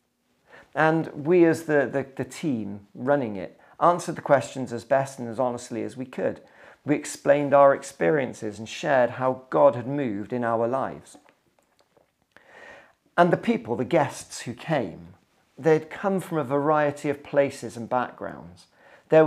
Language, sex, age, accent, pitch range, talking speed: English, male, 40-59, British, 125-160 Hz, 155 wpm